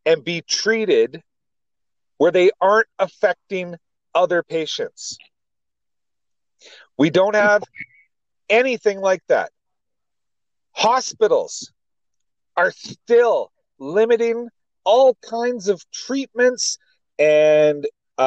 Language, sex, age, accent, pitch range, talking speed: English, male, 40-59, American, 155-240 Hz, 80 wpm